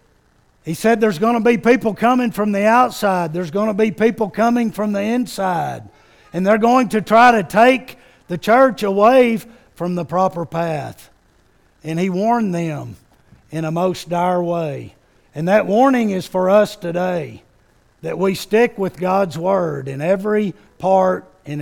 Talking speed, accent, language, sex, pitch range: 165 wpm, American, English, male, 165-215 Hz